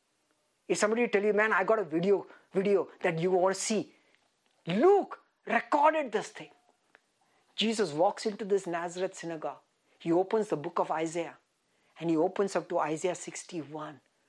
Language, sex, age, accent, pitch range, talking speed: English, female, 50-69, Indian, 160-240 Hz, 160 wpm